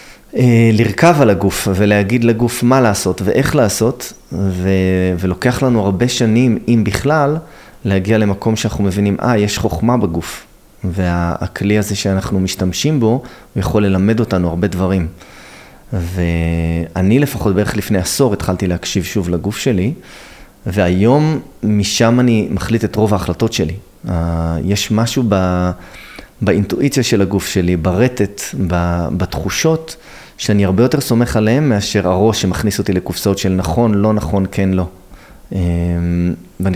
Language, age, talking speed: Hebrew, 30-49, 130 wpm